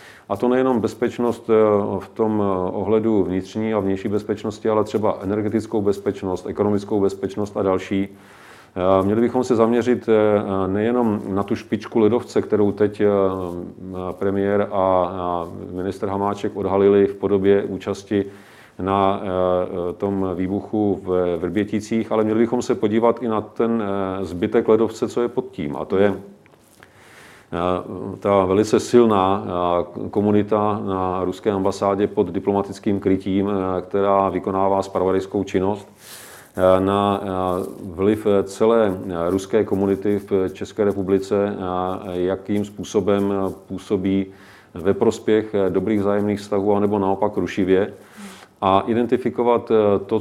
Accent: native